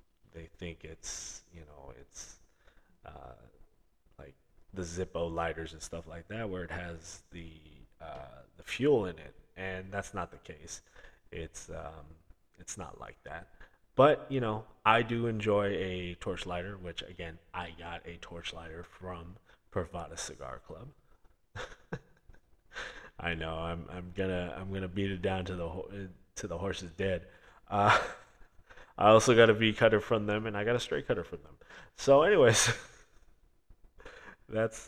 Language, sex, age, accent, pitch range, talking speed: English, male, 20-39, American, 85-110 Hz, 155 wpm